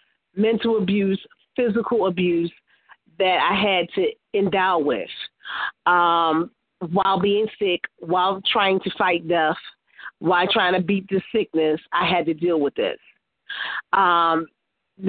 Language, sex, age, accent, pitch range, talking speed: English, female, 30-49, American, 180-225 Hz, 125 wpm